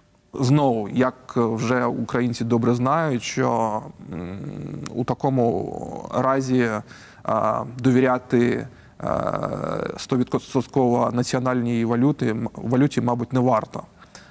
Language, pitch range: Ukrainian, 120-135 Hz